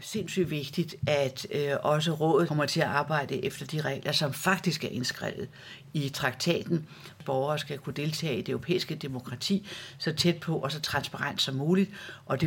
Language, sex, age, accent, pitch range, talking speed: Danish, female, 60-79, native, 140-175 Hz, 180 wpm